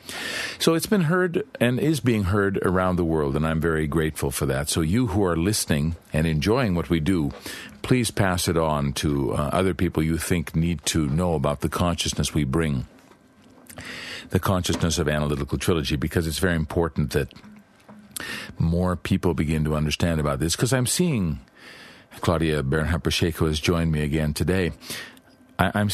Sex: male